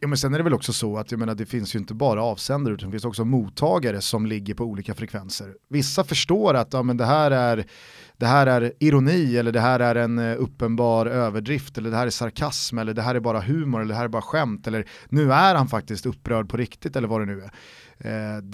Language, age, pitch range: Swedish, 30-49, 110-135 Hz